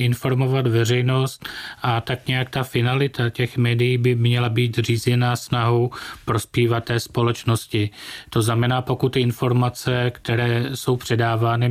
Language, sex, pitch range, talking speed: Czech, male, 115-125 Hz, 130 wpm